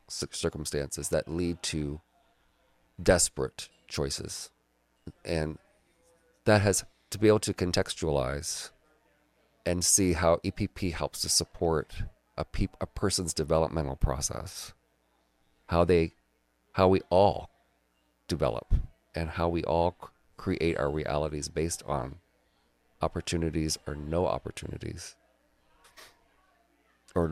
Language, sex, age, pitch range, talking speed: English, male, 40-59, 75-90 Hz, 105 wpm